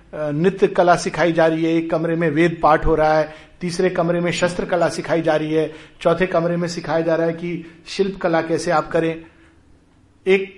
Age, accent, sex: 50-69, native, male